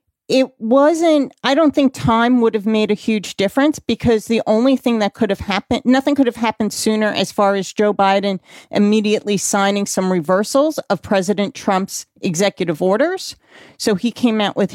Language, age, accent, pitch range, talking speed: English, 40-59, American, 195-245 Hz, 180 wpm